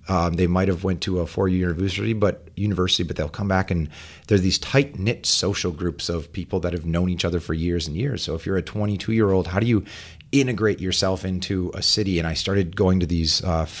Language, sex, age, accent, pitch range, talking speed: English, male, 30-49, American, 85-105 Hz, 245 wpm